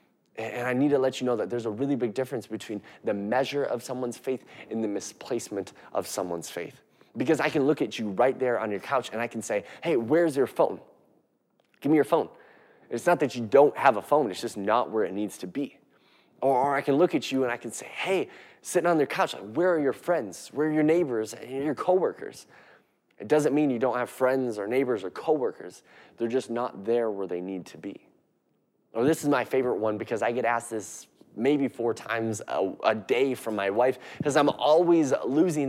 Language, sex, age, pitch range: English, male, 20-39, 110-145 Hz